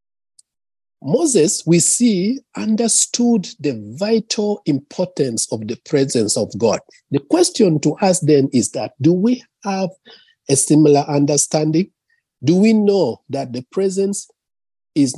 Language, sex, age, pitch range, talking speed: English, male, 50-69, 140-215 Hz, 125 wpm